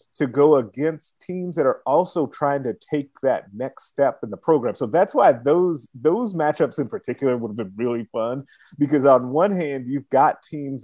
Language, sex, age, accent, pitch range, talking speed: English, male, 30-49, American, 115-140 Hz, 200 wpm